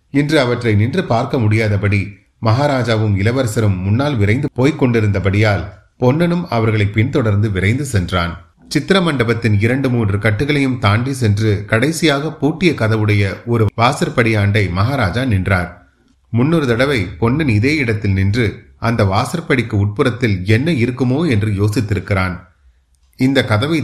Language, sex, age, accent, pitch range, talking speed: Tamil, male, 30-49, native, 95-125 Hz, 110 wpm